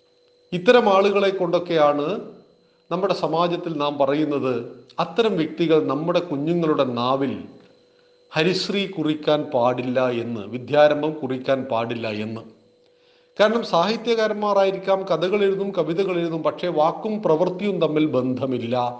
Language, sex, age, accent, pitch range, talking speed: Malayalam, male, 40-59, native, 145-190 Hz, 90 wpm